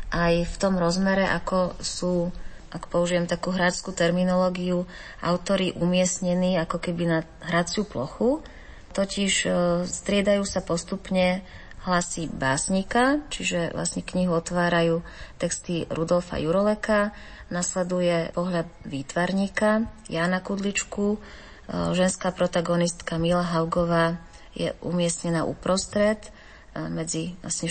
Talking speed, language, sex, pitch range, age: 95 wpm, Slovak, female, 165-190 Hz, 30-49